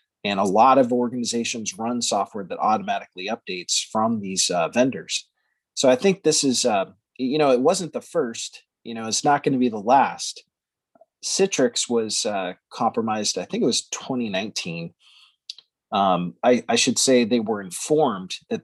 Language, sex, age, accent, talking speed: English, male, 30-49, American, 165 wpm